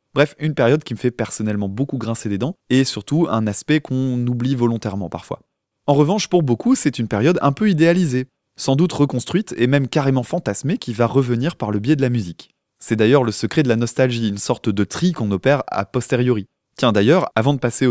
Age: 20-39